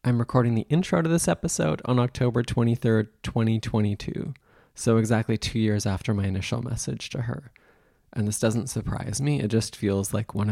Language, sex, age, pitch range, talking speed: English, male, 20-39, 105-130 Hz, 175 wpm